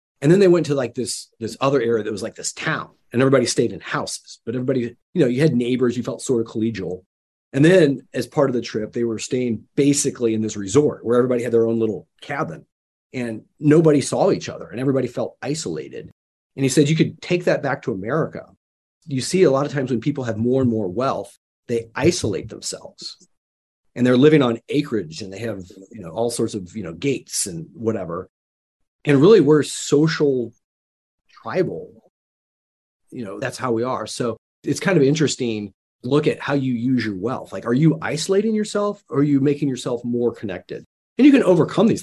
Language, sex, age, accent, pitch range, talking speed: English, male, 30-49, American, 110-140 Hz, 210 wpm